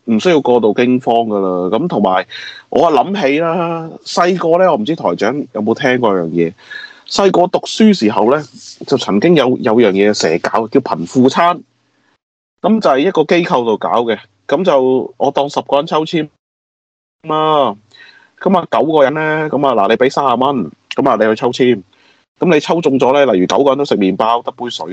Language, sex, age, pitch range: Chinese, male, 30-49, 100-140 Hz